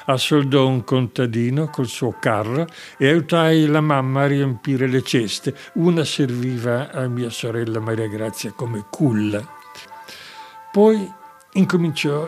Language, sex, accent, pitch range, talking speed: Italian, male, native, 120-145 Hz, 120 wpm